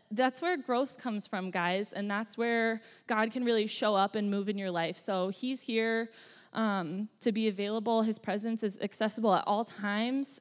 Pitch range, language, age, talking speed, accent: 200-240 Hz, English, 20-39, 190 wpm, American